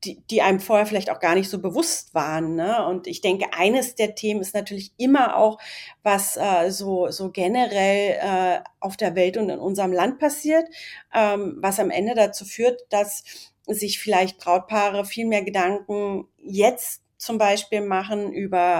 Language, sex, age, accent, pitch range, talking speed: German, female, 40-59, German, 180-215 Hz, 170 wpm